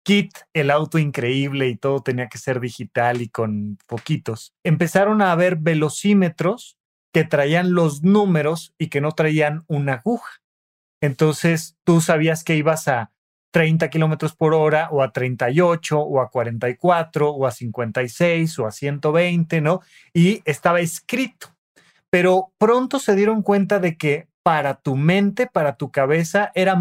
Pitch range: 150-190 Hz